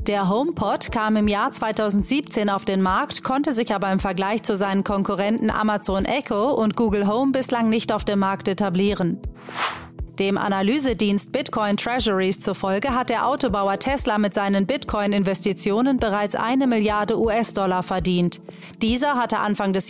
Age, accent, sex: 30-49, German, female